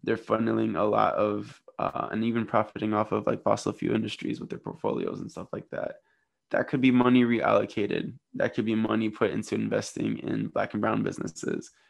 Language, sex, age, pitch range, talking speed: English, male, 20-39, 110-120 Hz, 195 wpm